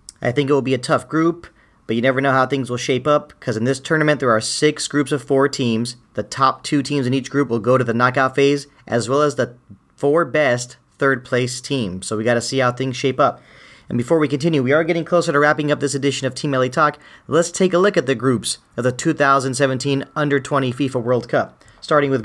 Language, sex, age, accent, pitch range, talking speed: English, male, 40-59, American, 125-150 Hz, 250 wpm